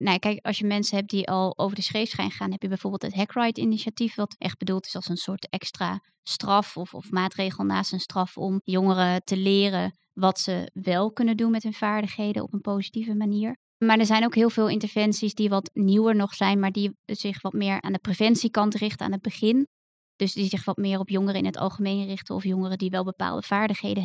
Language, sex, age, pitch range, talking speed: Dutch, female, 20-39, 190-205 Hz, 220 wpm